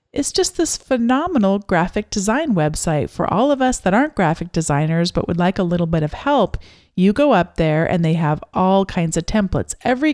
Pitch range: 165-195 Hz